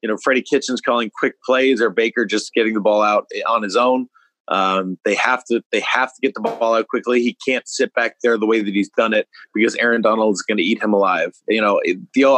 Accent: American